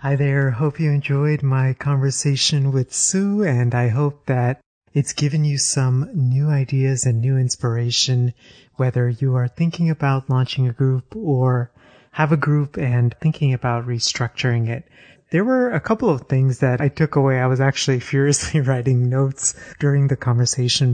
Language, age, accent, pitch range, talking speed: English, 30-49, American, 120-145 Hz, 165 wpm